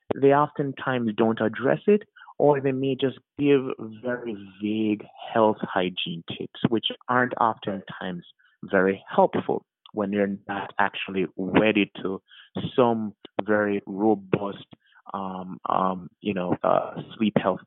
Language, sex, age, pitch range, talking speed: English, male, 30-49, 105-140 Hz, 120 wpm